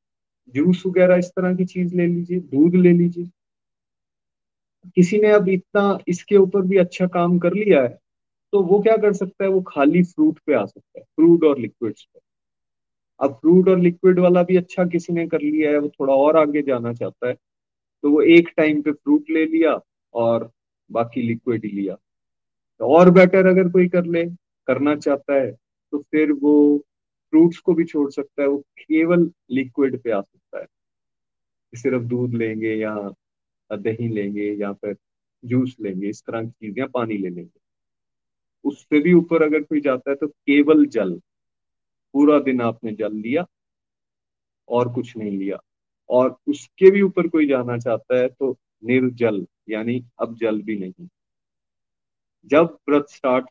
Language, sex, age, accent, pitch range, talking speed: Hindi, male, 30-49, native, 120-175 Hz, 170 wpm